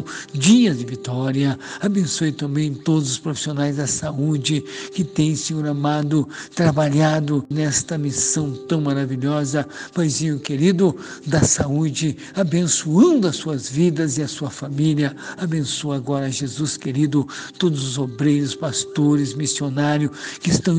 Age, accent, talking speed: 60-79, Brazilian, 120 wpm